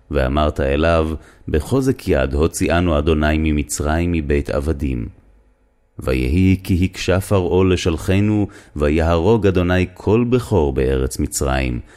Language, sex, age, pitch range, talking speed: Hebrew, male, 30-49, 70-100 Hz, 100 wpm